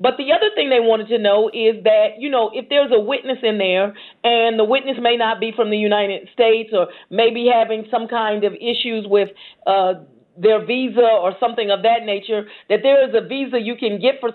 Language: English